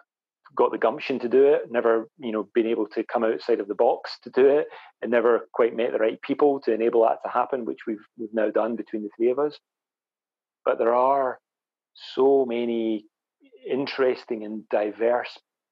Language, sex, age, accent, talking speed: English, male, 40-59, British, 190 wpm